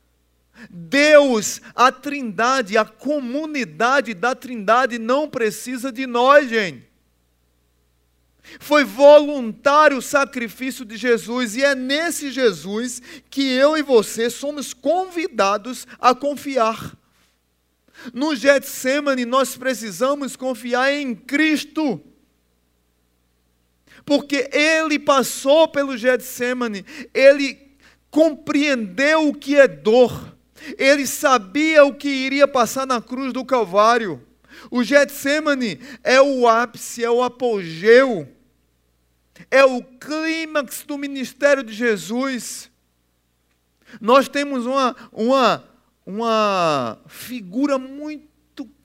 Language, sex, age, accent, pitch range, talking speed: Portuguese, male, 40-59, Brazilian, 215-280 Hz, 100 wpm